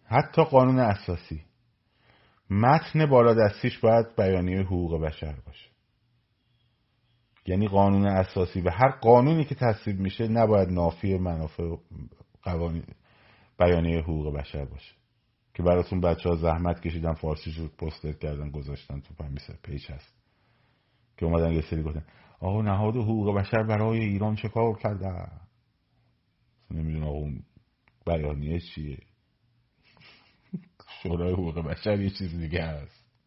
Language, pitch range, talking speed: Persian, 85-120 Hz, 125 wpm